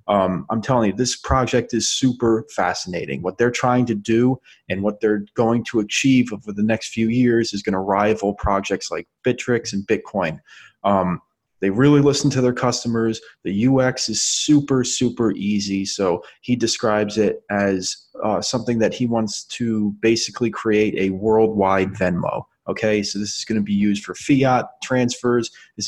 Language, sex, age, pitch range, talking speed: English, male, 30-49, 100-120 Hz, 170 wpm